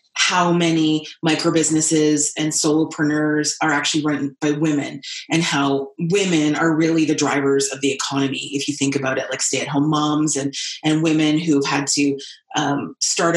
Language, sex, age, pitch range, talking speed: English, female, 30-49, 150-200 Hz, 160 wpm